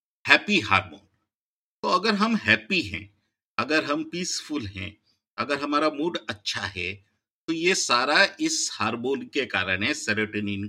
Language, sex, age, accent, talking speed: Hindi, male, 50-69, native, 140 wpm